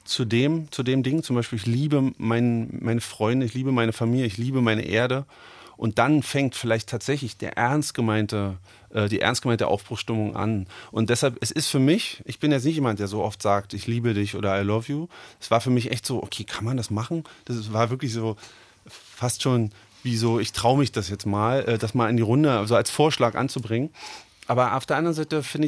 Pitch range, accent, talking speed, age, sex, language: 115-135 Hz, German, 225 wpm, 30-49, male, German